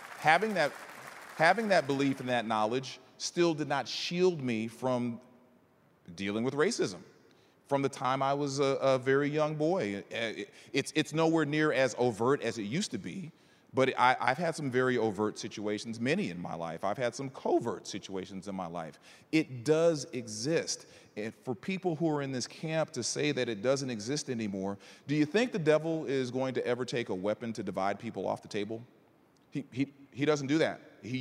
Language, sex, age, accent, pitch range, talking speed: English, male, 40-59, American, 120-160 Hz, 195 wpm